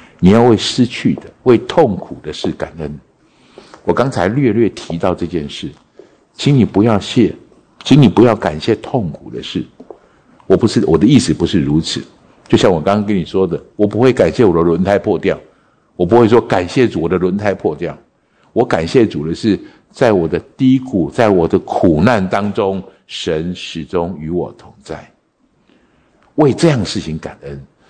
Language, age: English, 60-79